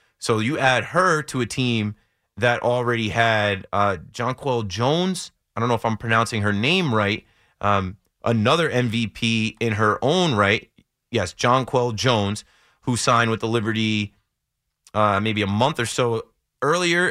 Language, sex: English, male